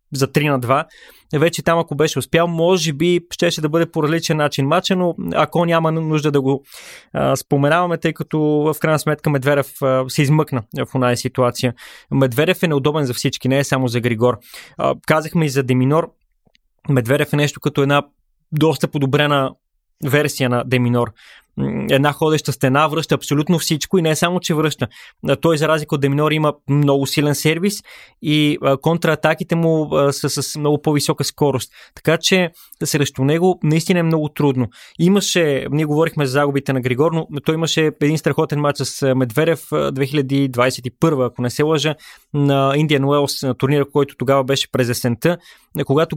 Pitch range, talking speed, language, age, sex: 135-160 Hz, 170 wpm, Bulgarian, 20-39, male